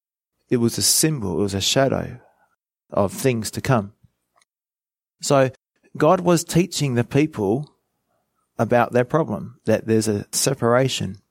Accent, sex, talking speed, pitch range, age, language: Australian, male, 135 wpm, 105-135 Hz, 30-49, English